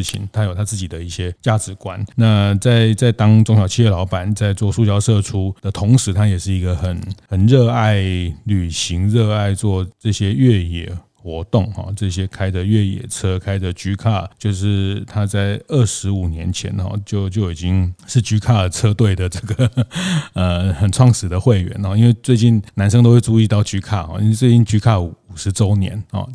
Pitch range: 95-115 Hz